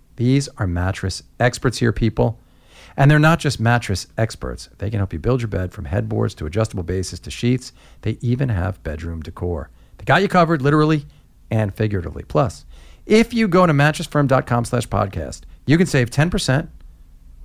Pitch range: 90-140 Hz